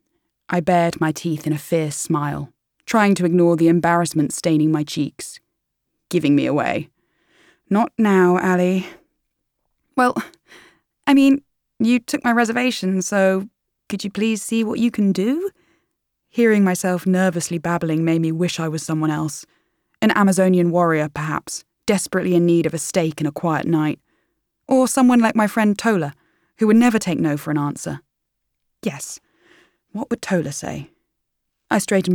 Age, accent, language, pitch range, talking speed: 20-39, British, English, 160-220 Hz, 155 wpm